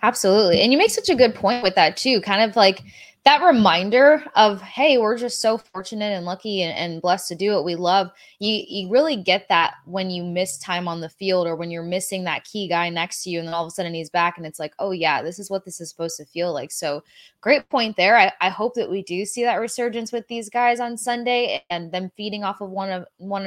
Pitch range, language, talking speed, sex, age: 185-230 Hz, English, 260 wpm, female, 20-39